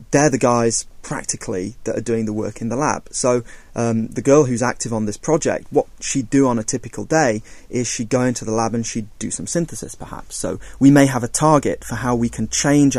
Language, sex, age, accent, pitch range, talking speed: English, male, 30-49, British, 110-135 Hz, 235 wpm